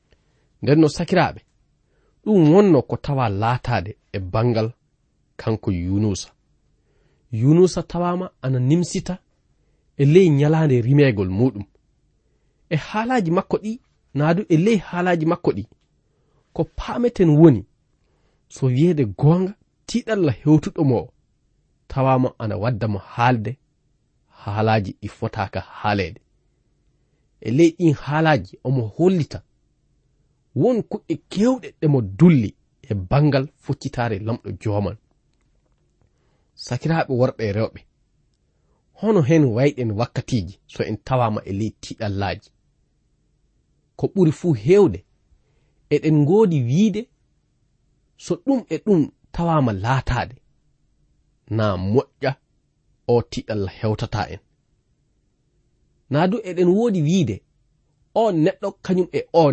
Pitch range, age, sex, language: 110-165 Hz, 30-49, male, English